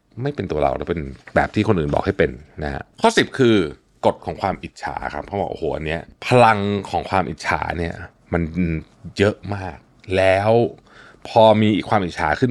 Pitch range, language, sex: 85-115 Hz, Thai, male